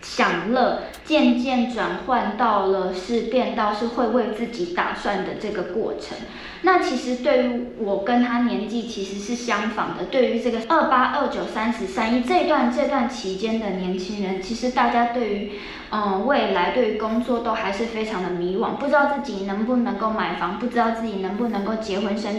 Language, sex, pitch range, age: Chinese, female, 200-250 Hz, 20-39